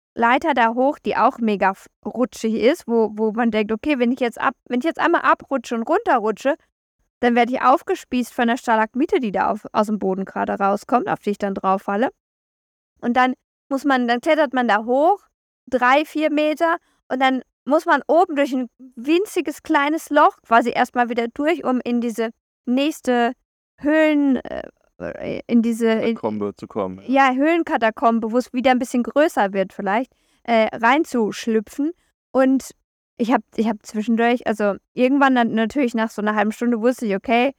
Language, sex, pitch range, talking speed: German, female, 225-280 Hz, 175 wpm